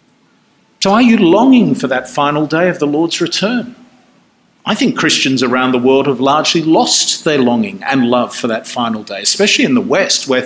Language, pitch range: English, 150-205 Hz